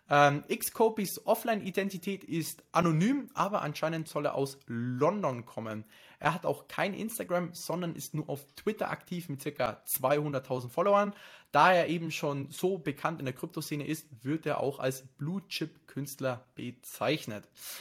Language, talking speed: German, 145 wpm